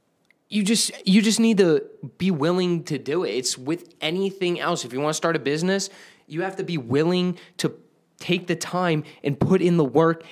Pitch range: 135-210 Hz